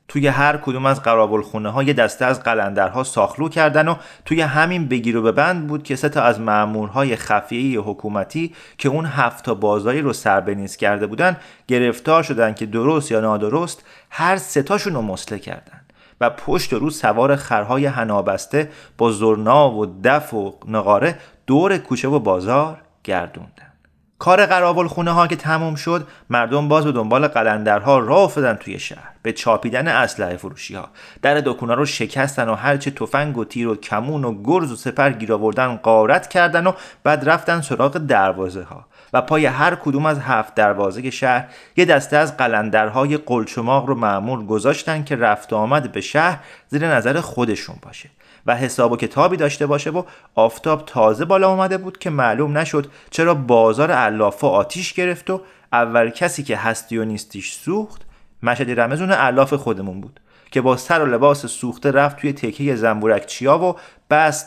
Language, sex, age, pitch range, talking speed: Persian, male, 30-49, 115-155 Hz, 165 wpm